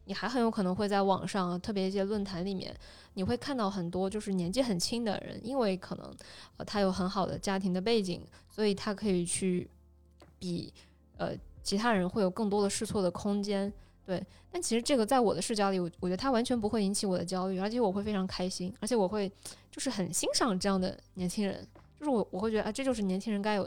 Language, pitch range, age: Chinese, 185-215 Hz, 20-39